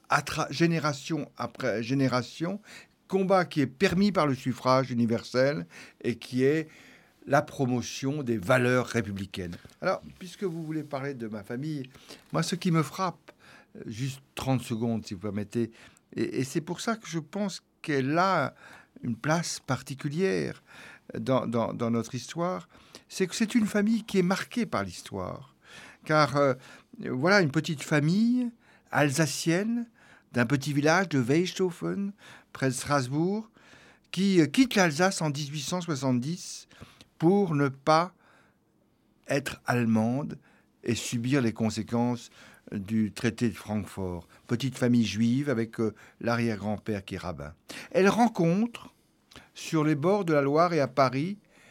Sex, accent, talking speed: male, French, 140 wpm